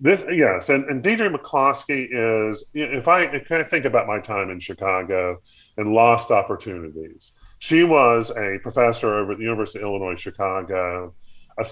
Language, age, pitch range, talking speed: English, 40-59, 95-130 Hz, 165 wpm